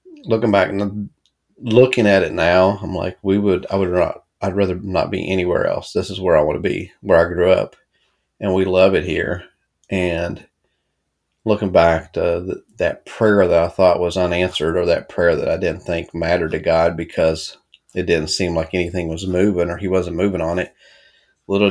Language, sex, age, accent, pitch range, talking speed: English, male, 30-49, American, 80-95 Hz, 200 wpm